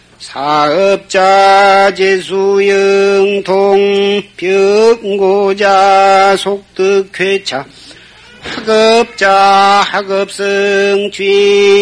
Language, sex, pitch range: Korean, male, 195-200 Hz